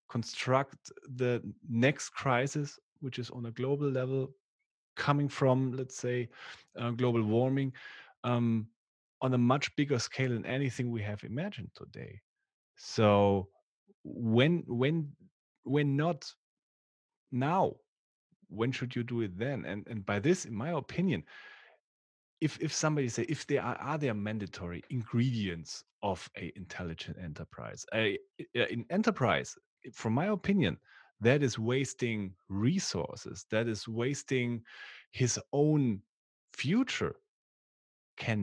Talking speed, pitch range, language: 125 wpm, 115-140 Hz, English